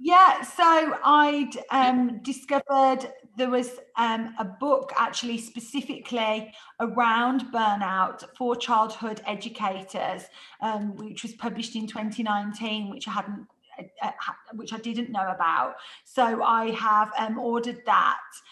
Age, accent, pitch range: 30-49, British, 220-260 Hz